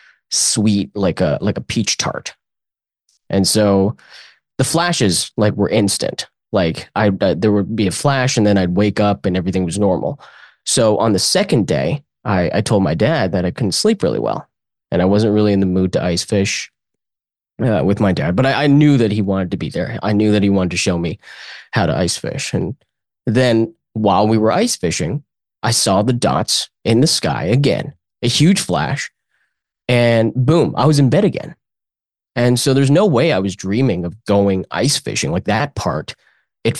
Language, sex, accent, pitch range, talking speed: English, male, American, 95-125 Hz, 200 wpm